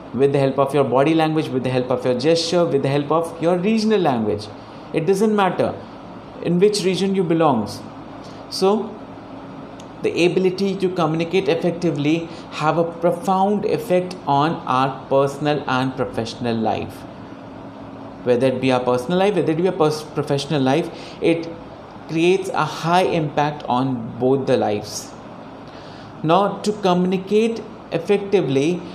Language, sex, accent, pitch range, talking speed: Hindi, male, native, 135-180 Hz, 145 wpm